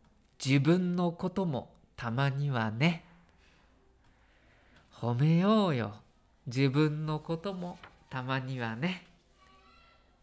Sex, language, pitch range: male, Japanese, 140-205 Hz